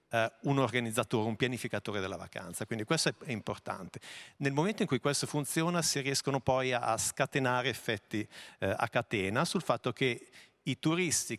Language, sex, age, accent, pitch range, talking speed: Italian, male, 50-69, native, 105-135 Hz, 175 wpm